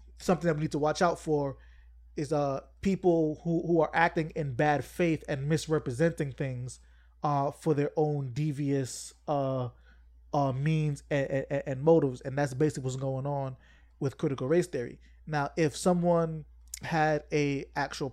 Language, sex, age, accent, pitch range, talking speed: English, male, 20-39, American, 135-155 Hz, 160 wpm